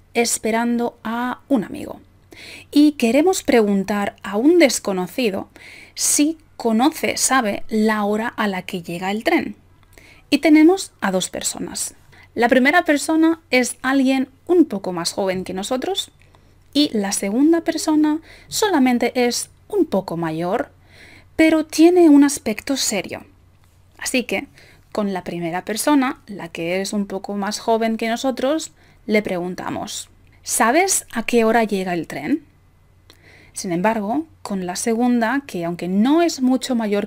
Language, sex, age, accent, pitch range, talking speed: Spanish, female, 30-49, Spanish, 195-265 Hz, 140 wpm